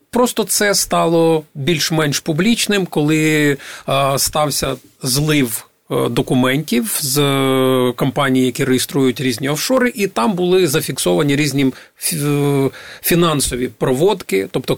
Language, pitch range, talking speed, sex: Ukrainian, 135-175 Hz, 95 wpm, male